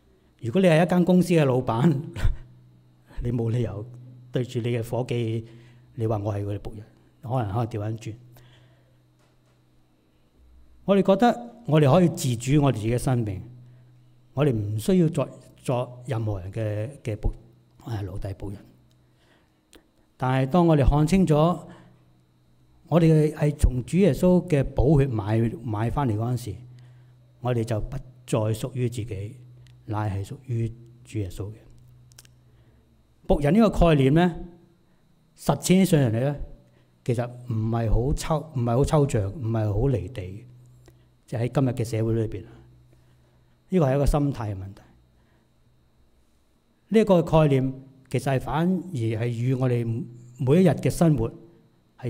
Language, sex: Chinese, male